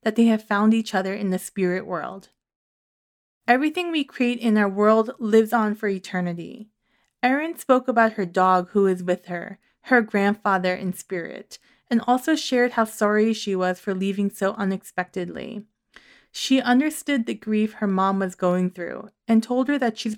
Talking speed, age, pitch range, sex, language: 170 wpm, 20-39, 195-235 Hz, female, English